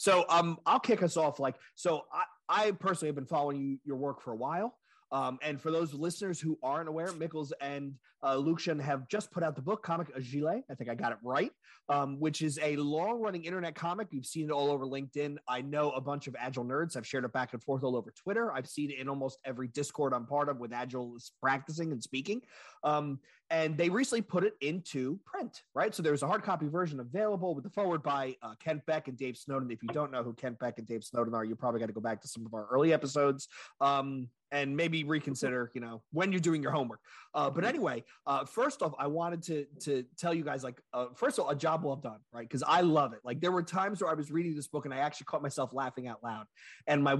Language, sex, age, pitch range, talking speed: English, male, 30-49, 130-165 Hz, 250 wpm